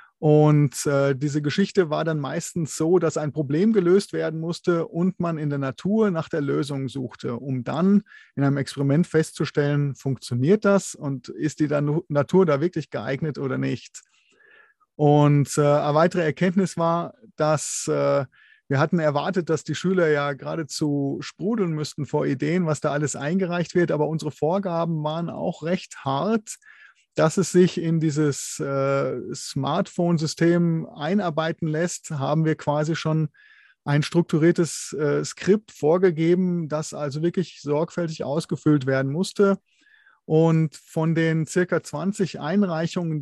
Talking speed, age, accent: 140 wpm, 30-49, German